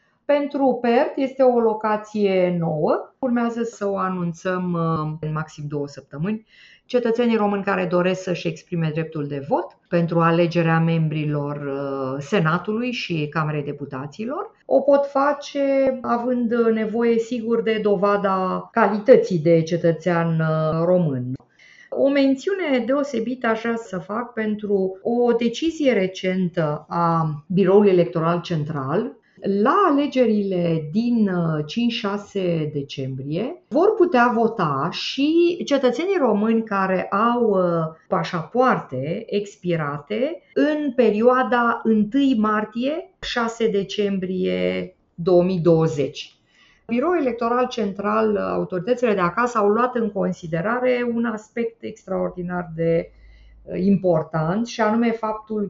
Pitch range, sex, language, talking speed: 170-235 Hz, female, Romanian, 100 wpm